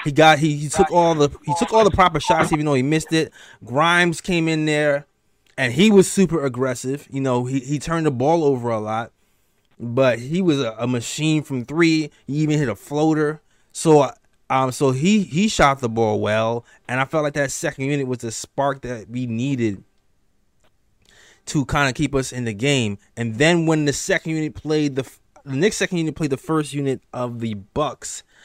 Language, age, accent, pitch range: English, 20-39, American, 115-150 Hz